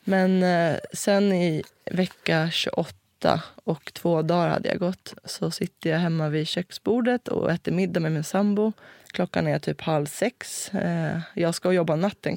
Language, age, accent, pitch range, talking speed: Swedish, 20-39, native, 160-200 Hz, 155 wpm